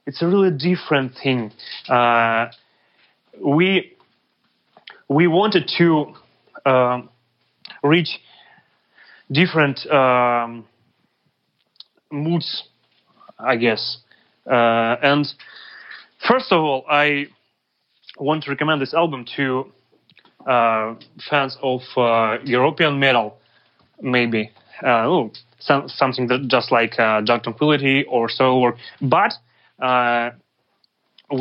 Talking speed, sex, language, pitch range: 95 wpm, male, English, 125-155 Hz